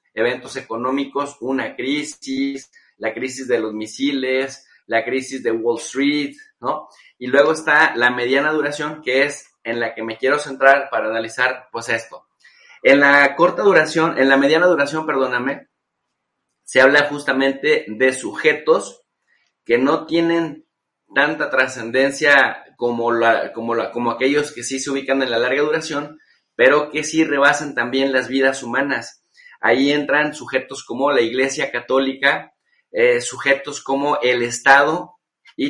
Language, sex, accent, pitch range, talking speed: Spanish, male, Mexican, 125-145 Hz, 150 wpm